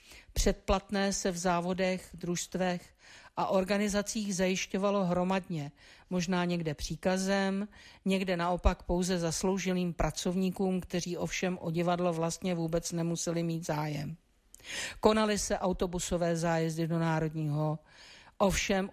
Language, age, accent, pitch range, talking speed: Czech, 50-69, native, 170-190 Hz, 105 wpm